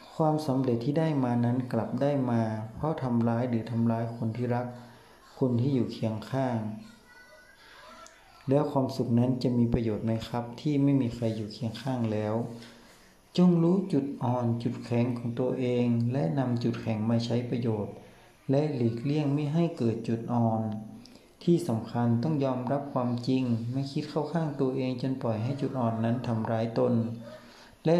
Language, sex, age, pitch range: Thai, male, 60-79, 115-135 Hz